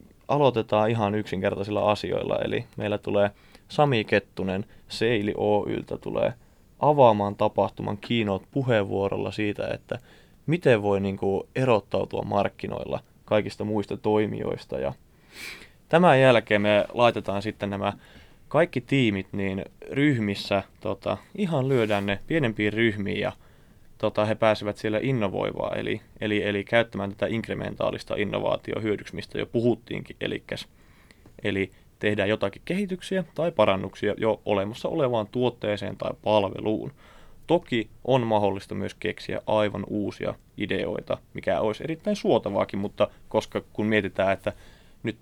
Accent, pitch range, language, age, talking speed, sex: native, 100-115 Hz, Finnish, 20-39, 120 wpm, male